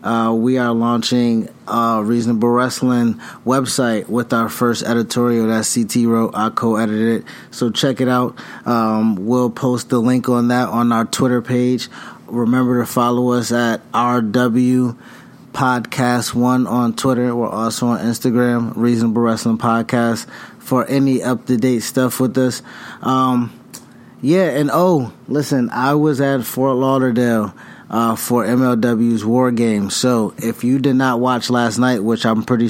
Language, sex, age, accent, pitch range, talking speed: English, male, 20-39, American, 115-125 Hz, 160 wpm